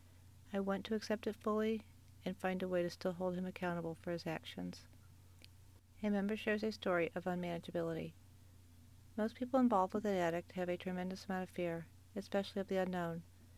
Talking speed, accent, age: 180 wpm, American, 50-69